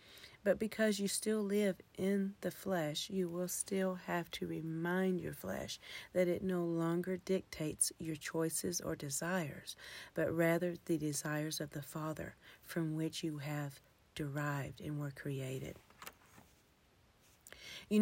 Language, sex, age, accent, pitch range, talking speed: English, female, 40-59, American, 150-180 Hz, 135 wpm